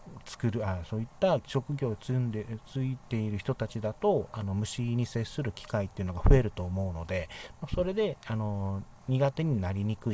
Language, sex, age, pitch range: Japanese, male, 40-59, 100-140 Hz